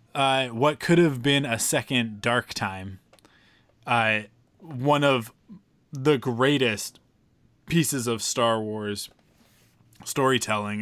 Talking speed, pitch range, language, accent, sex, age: 105 wpm, 110-140 Hz, English, American, male, 20-39